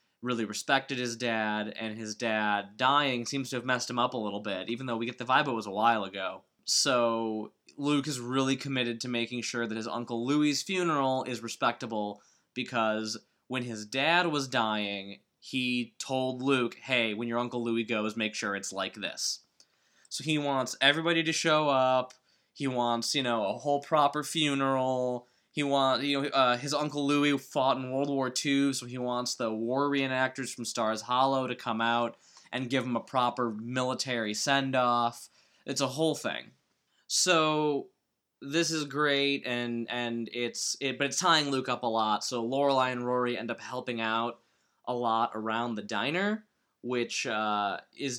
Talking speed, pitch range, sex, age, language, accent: 180 wpm, 115-135 Hz, male, 20-39, English, American